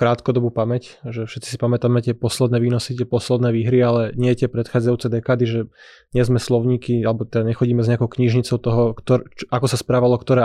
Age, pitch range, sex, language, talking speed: 20-39, 115-125 Hz, male, Slovak, 190 wpm